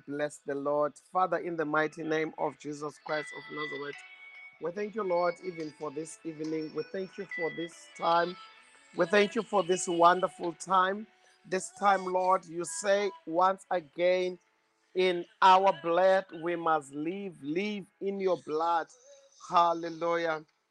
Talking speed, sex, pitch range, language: 150 wpm, male, 160-190 Hz, English